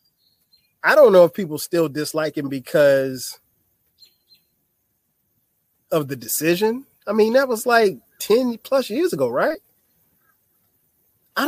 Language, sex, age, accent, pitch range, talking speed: English, male, 30-49, American, 140-180 Hz, 115 wpm